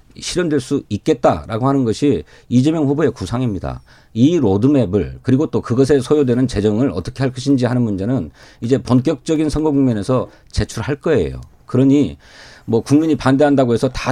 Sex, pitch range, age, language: male, 110-150 Hz, 40-59, Korean